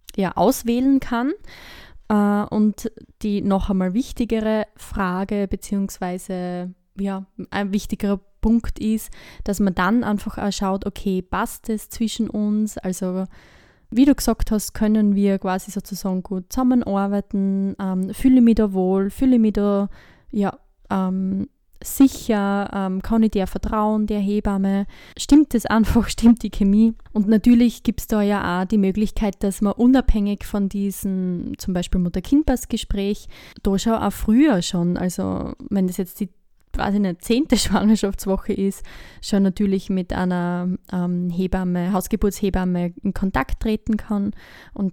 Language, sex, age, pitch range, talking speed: German, female, 10-29, 190-220 Hz, 140 wpm